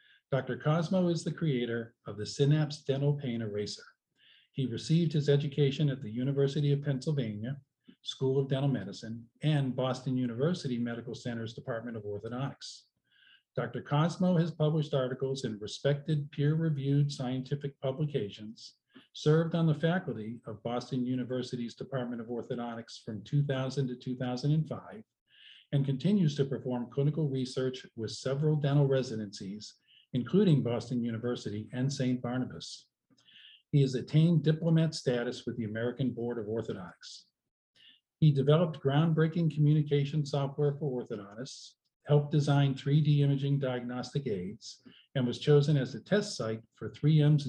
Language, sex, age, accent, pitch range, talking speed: English, male, 50-69, American, 120-145 Hz, 135 wpm